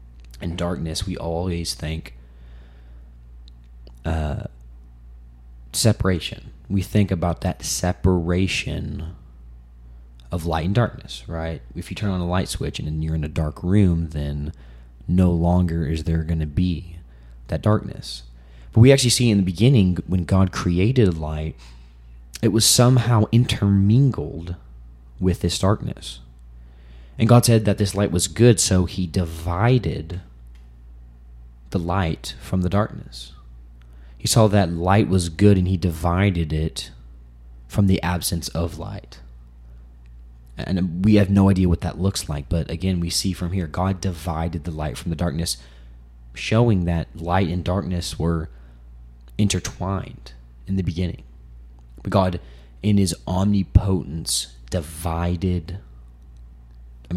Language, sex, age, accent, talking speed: English, male, 30-49, American, 135 wpm